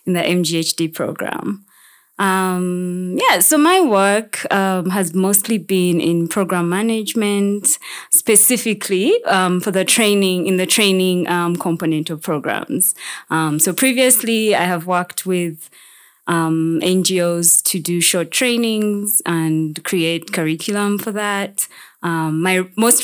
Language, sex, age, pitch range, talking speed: English, female, 20-39, 165-200 Hz, 130 wpm